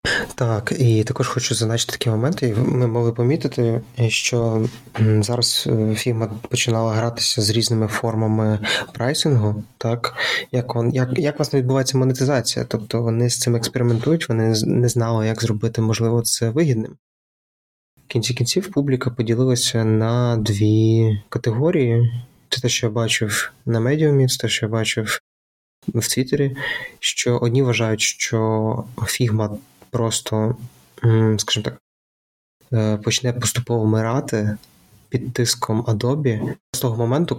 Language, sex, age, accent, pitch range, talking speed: Ukrainian, male, 20-39, native, 110-125 Hz, 130 wpm